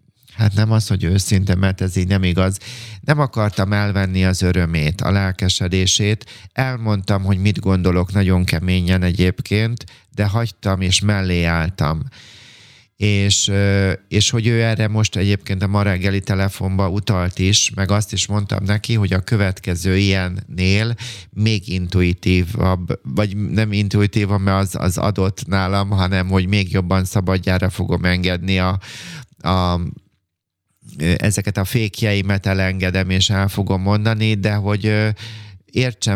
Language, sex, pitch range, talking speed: Hungarian, male, 95-105 Hz, 135 wpm